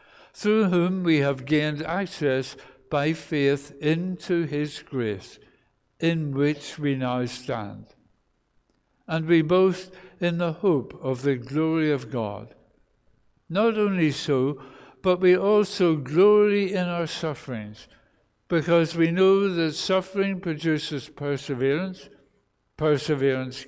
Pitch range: 140-180 Hz